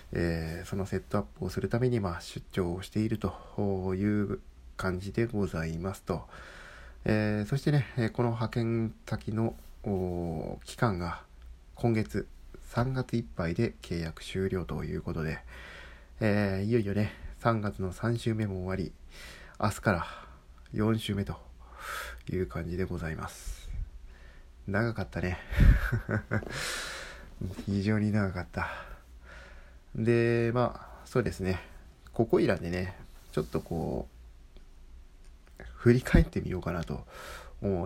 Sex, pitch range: male, 80-110 Hz